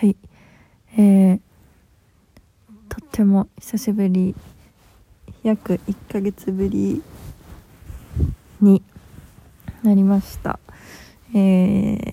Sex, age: female, 20-39